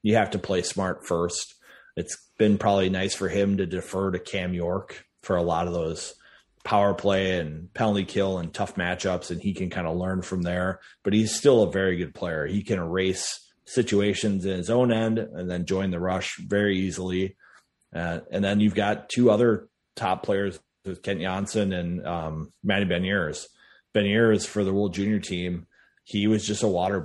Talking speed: 190 wpm